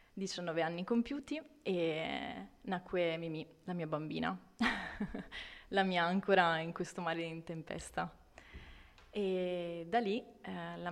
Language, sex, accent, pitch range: Italian, female, native, 165-190 Hz